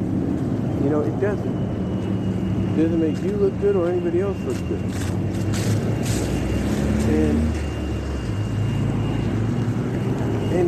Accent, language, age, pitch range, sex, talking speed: American, English, 50-69, 110-165 Hz, male, 95 wpm